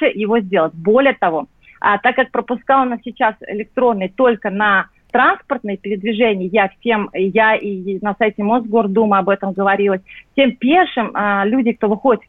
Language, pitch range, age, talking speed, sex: Russian, 190-235 Hz, 40-59, 150 wpm, female